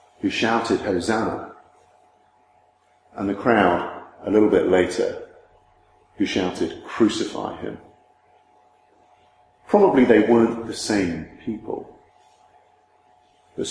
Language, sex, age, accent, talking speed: English, male, 50-69, British, 90 wpm